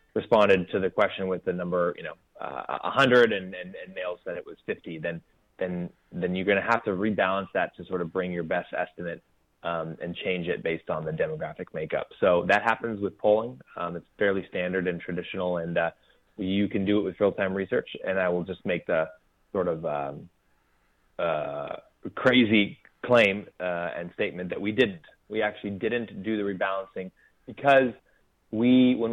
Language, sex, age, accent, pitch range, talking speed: English, male, 20-39, American, 90-110 Hz, 185 wpm